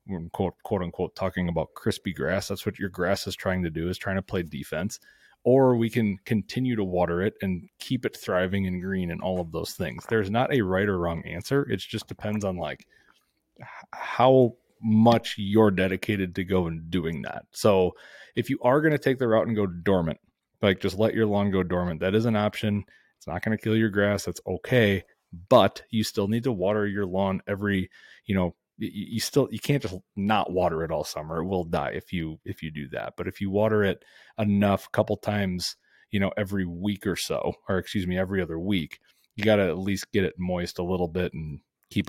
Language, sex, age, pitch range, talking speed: English, male, 30-49, 90-110 Hz, 220 wpm